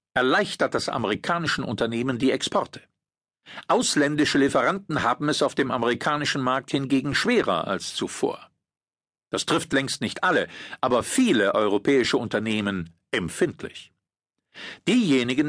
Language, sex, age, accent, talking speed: German, male, 50-69, German, 110 wpm